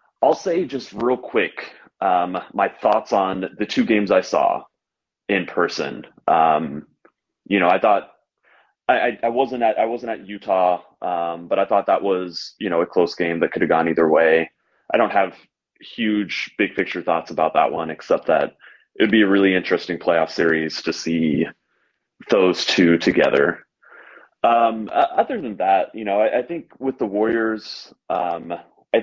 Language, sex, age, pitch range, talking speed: English, male, 30-49, 85-110 Hz, 175 wpm